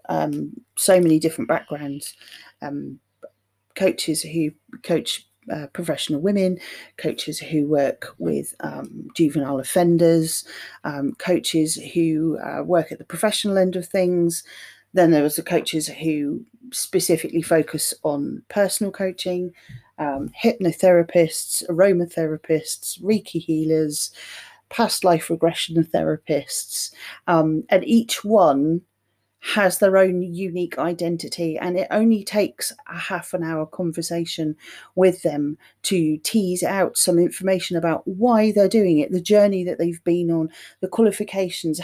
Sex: female